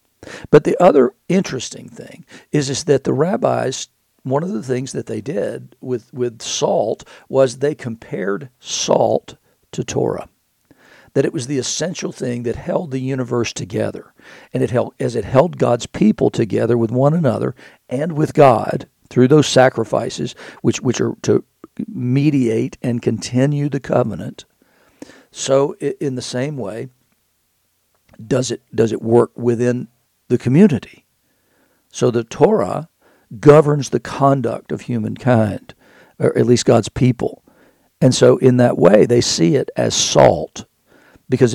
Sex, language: male, English